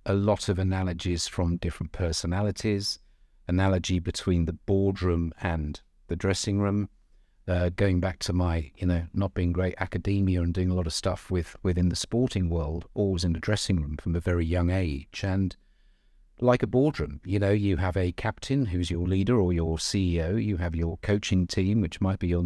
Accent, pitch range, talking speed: British, 90-110 Hz, 190 wpm